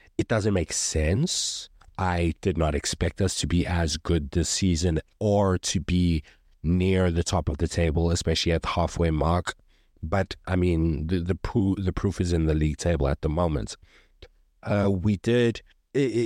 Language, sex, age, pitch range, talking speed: English, male, 30-49, 80-95 Hz, 180 wpm